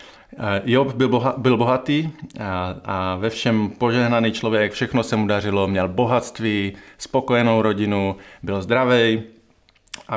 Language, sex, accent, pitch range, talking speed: Czech, male, native, 100-120 Hz, 130 wpm